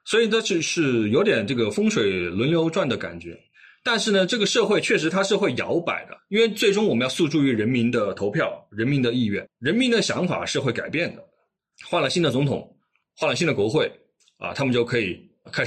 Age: 20-39